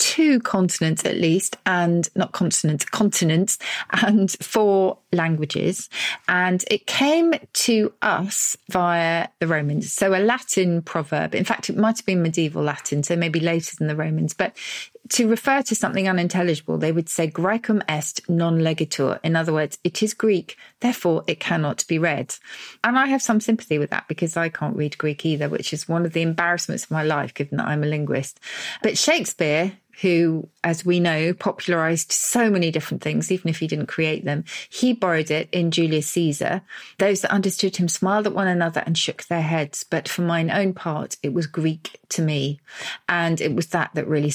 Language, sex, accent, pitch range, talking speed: English, female, British, 160-195 Hz, 190 wpm